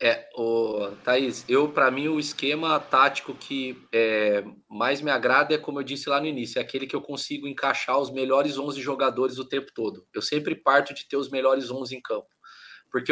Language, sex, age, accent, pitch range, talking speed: Portuguese, male, 20-39, Brazilian, 135-160 Hz, 205 wpm